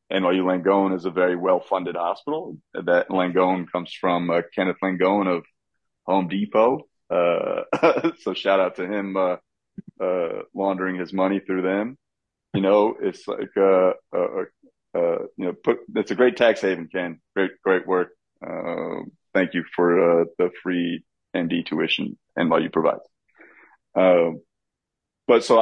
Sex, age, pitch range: male, 30-49, 85-100 Hz